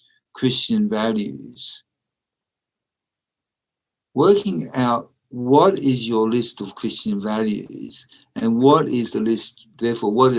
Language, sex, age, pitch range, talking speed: English, male, 60-79, 115-140 Hz, 105 wpm